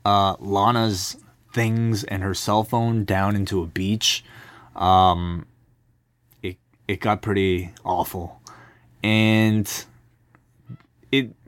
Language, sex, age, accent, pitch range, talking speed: English, male, 20-39, American, 100-120 Hz, 100 wpm